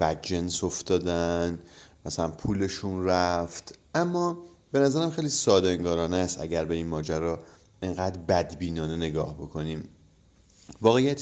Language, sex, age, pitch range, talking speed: Persian, male, 30-49, 85-115 Hz, 110 wpm